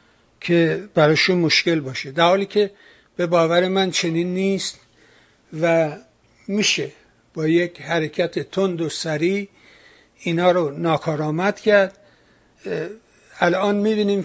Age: 60-79